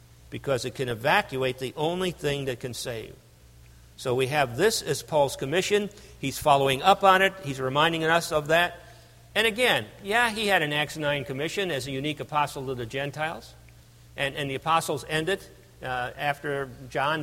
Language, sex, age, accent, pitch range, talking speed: English, male, 50-69, American, 130-165 Hz, 180 wpm